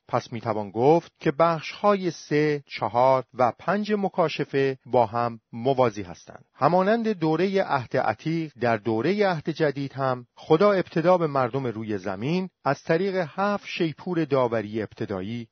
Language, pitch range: Persian, 120-165 Hz